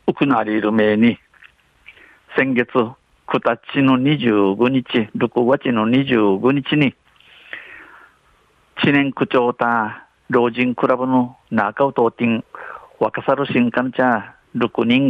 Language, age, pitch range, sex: Japanese, 50-69, 115-145 Hz, male